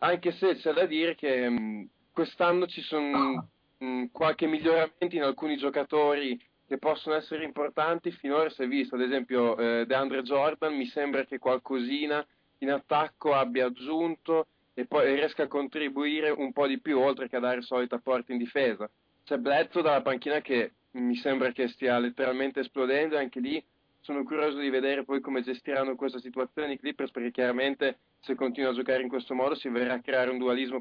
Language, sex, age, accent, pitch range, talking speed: Italian, male, 20-39, native, 125-150 Hz, 185 wpm